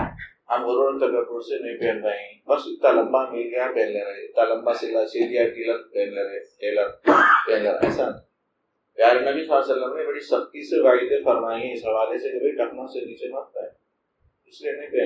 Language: English